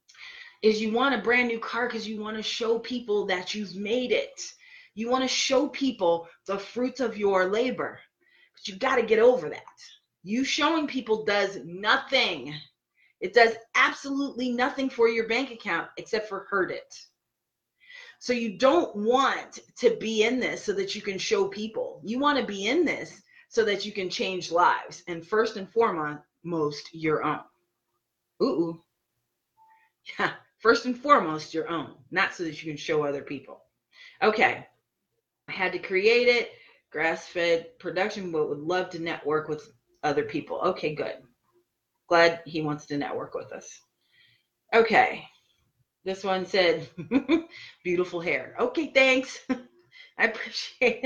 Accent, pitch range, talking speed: American, 175-275 Hz, 155 wpm